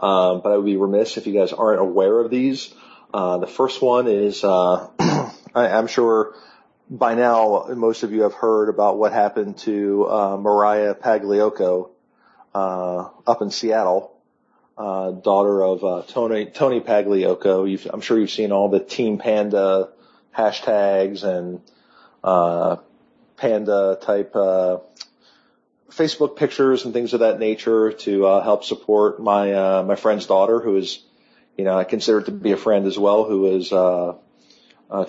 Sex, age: male, 40-59